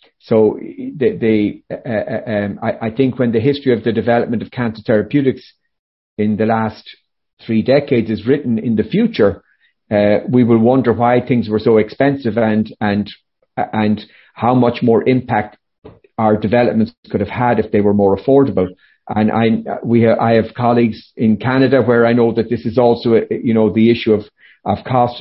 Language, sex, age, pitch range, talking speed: English, male, 50-69, 110-130 Hz, 185 wpm